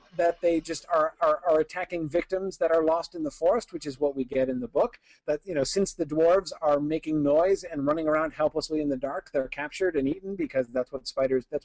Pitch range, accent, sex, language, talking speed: 145-190 Hz, American, male, English, 245 wpm